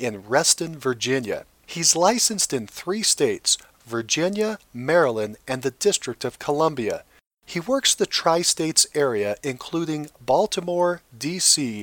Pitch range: 125-180 Hz